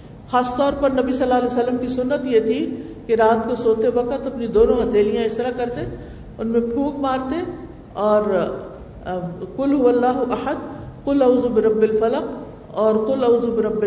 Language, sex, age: Urdu, female, 50-69